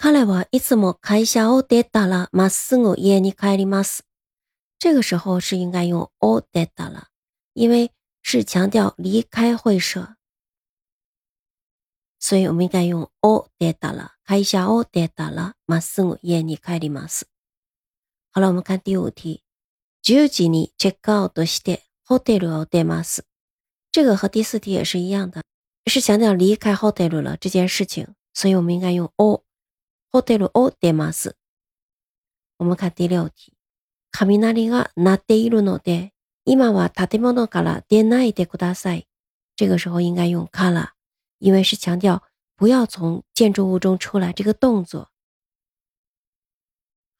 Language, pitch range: Chinese, 175-215 Hz